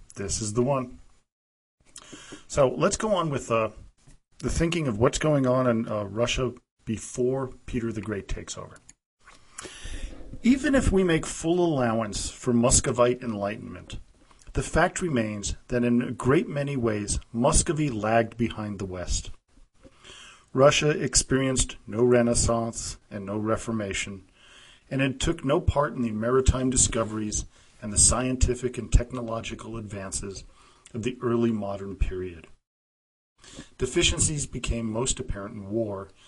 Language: English